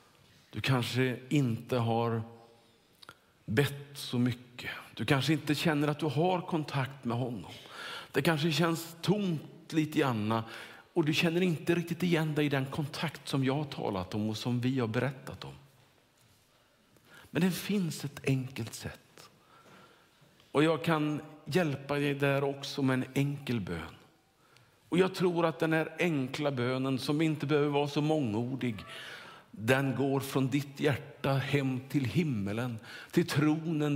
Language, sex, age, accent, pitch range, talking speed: Swedish, male, 50-69, Norwegian, 125-160 Hz, 150 wpm